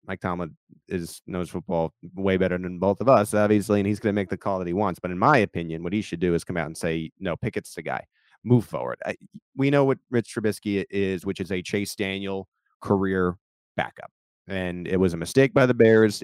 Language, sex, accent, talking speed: English, male, American, 235 wpm